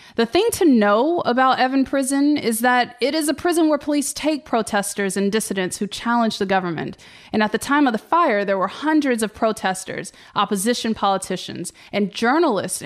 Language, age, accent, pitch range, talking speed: English, 20-39, American, 200-250 Hz, 180 wpm